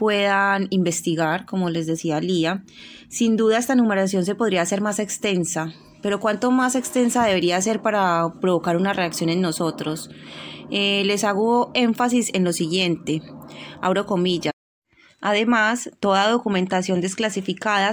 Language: Spanish